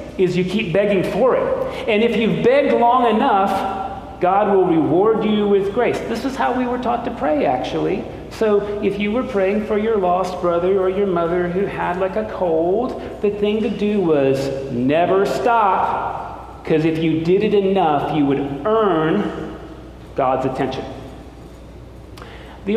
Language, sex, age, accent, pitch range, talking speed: English, male, 40-59, American, 145-210 Hz, 165 wpm